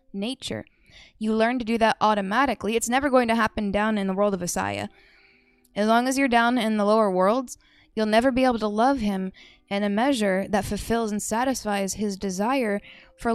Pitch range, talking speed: 200-240 Hz, 200 wpm